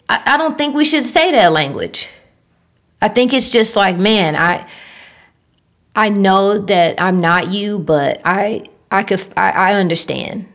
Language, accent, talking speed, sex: English, American, 160 wpm, female